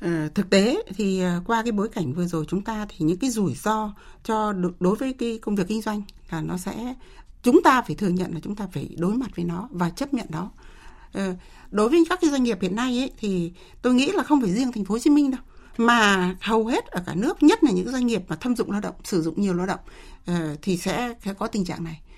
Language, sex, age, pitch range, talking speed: Vietnamese, female, 60-79, 180-240 Hz, 250 wpm